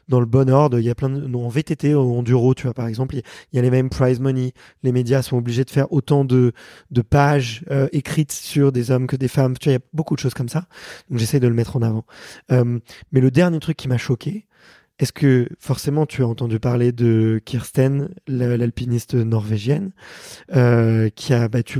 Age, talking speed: 20-39, 235 wpm